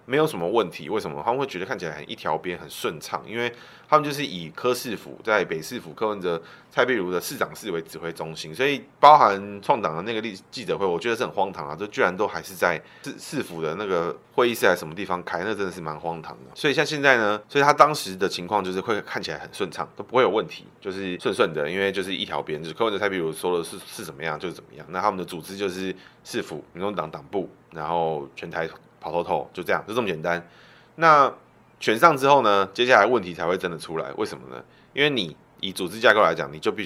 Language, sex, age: Chinese, male, 20-39